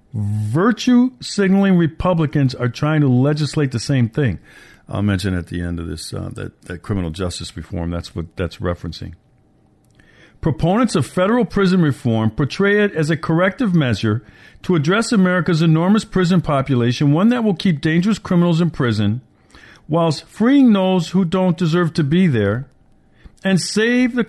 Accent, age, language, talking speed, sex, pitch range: American, 50-69, English, 155 wpm, male, 115-185 Hz